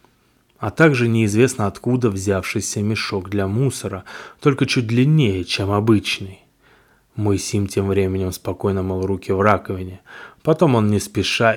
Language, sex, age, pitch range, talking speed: Russian, male, 20-39, 95-115 Hz, 135 wpm